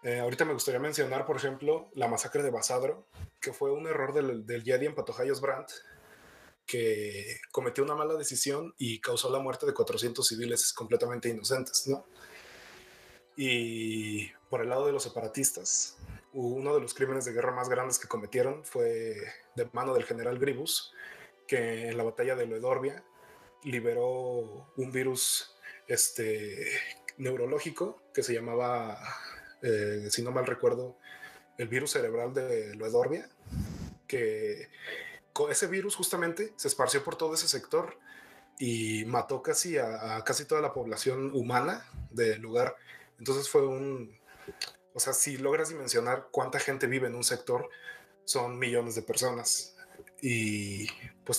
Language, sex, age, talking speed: Spanish, male, 20-39, 145 wpm